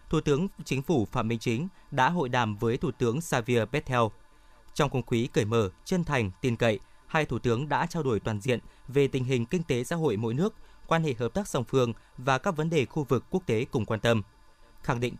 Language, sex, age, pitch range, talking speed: Vietnamese, male, 20-39, 120-155 Hz, 235 wpm